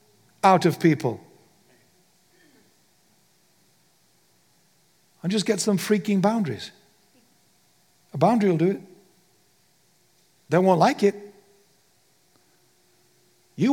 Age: 60-79